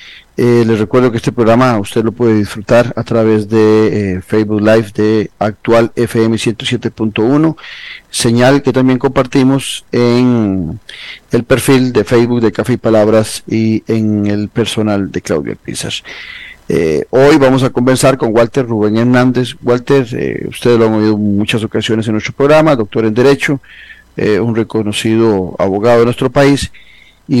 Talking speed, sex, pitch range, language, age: 160 wpm, male, 110-130 Hz, Spanish, 40-59